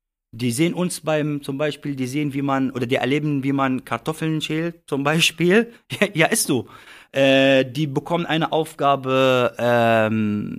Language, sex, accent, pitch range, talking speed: German, male, German, 125-170 Hz, 165 wpm